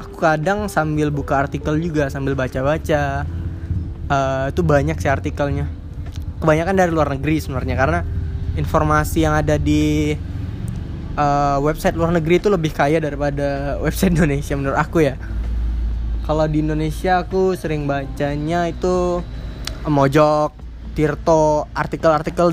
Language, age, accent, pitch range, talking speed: Indonesian, 20-39, native, 130-185 Hz, 125 wpm